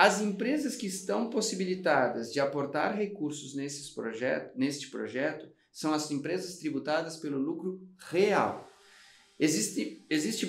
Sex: male